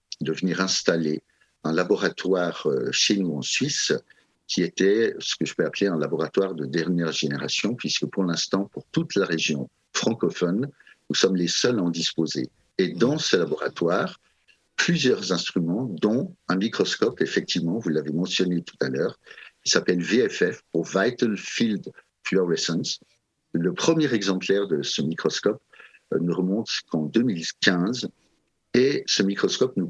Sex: male